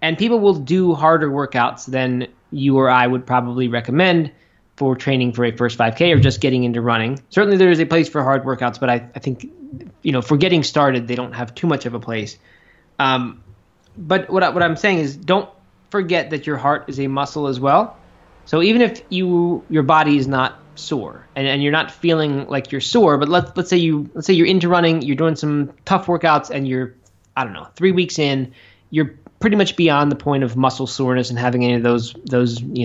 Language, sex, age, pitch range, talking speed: English, male, 20-39, 120-165 Hz, 225 wpm